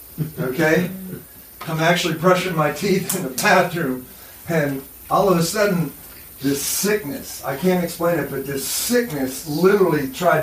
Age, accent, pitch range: 40-59, American, 155-185 Hz